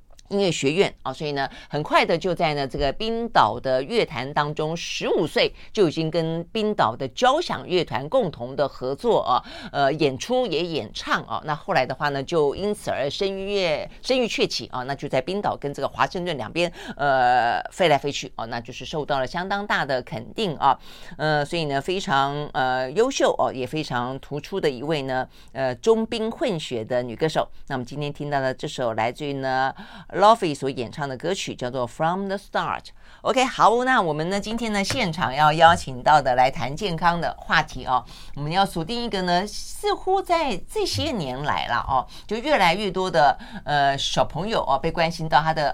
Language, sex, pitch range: Chinese, female, 135-200 Hz